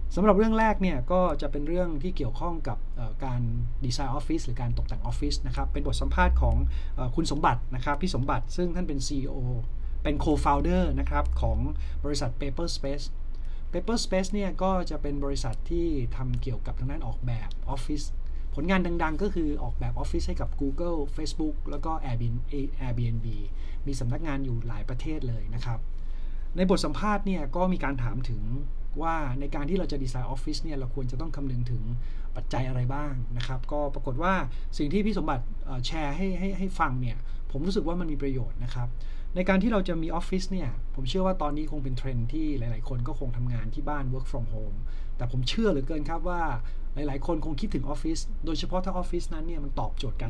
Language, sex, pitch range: Thai, male, 120-160 Hz